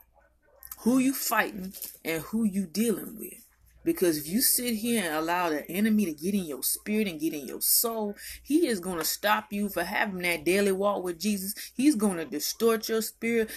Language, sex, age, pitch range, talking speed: English, female, 30-49, 175-225 Hz, 205 wpm